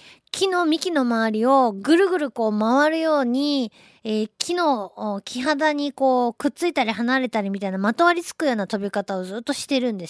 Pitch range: 205-285 Hz